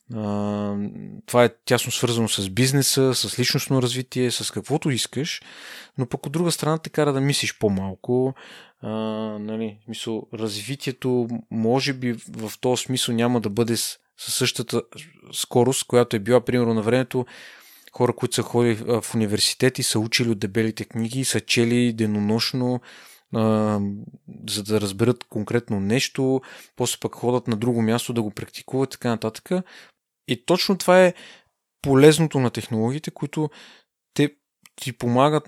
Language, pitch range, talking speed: Bulgarian, 115-135 Hz, 145 wpm